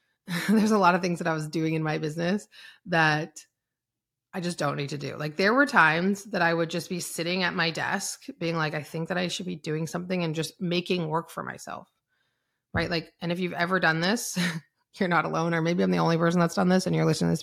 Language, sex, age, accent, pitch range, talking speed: English, female, 30-49, American, 155-190 Hz, 250 wpm